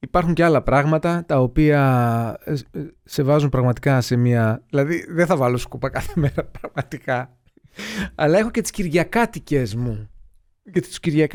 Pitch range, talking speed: 125-165 Hz, 135 wpm